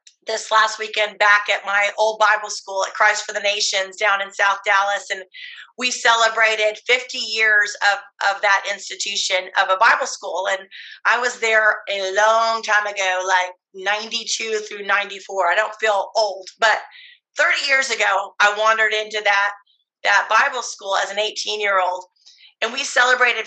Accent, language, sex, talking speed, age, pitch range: American, English, female, 165 wpm, 30-49, 200-225 Hz